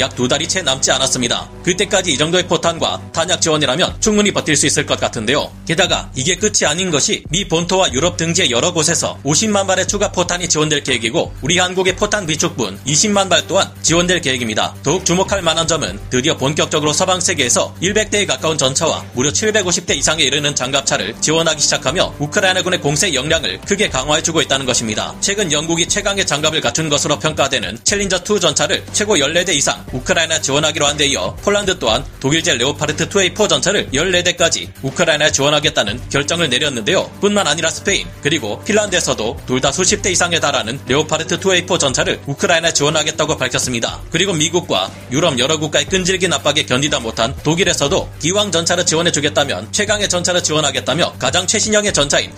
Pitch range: 140-185 Hz